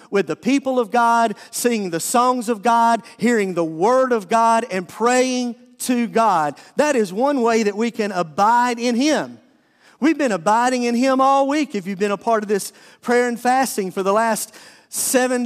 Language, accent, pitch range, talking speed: English, American, 185-235 Hz, 195 wpm